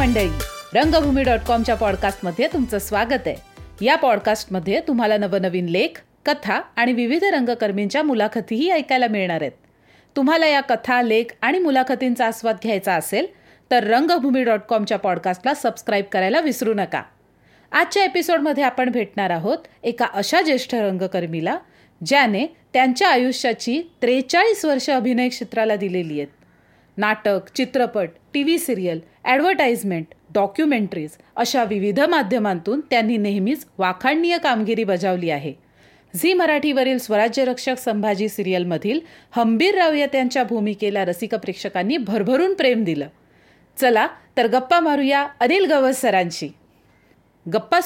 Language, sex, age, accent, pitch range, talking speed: Marathi, female, 40-59, native, 205-275 Hz, 115 wpm